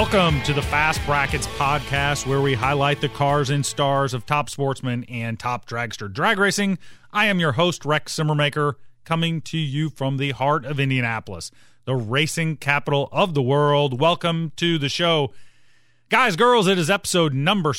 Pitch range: 130-160 Hz